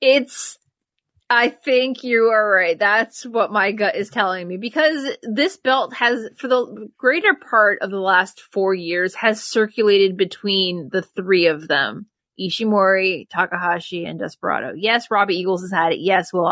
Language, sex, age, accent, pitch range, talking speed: English, female, 20-39, American, 195-245 Hz, 165 wpm